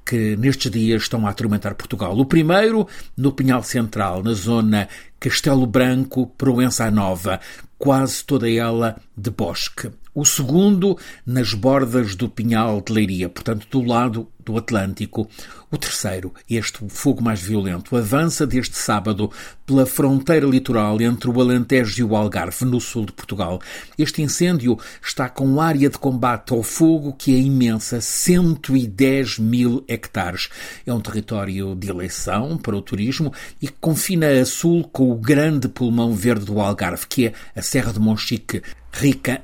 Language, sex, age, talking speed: Portuguese, male, 50-69, 150 wpm